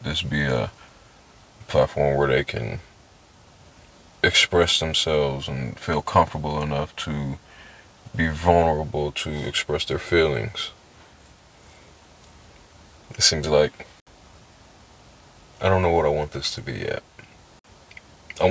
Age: 30-49